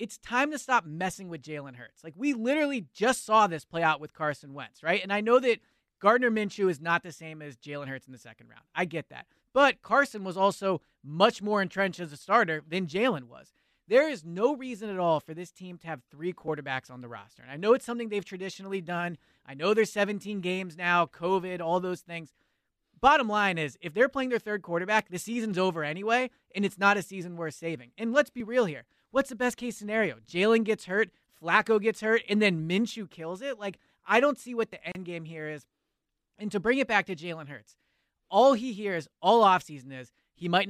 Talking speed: 225 wpm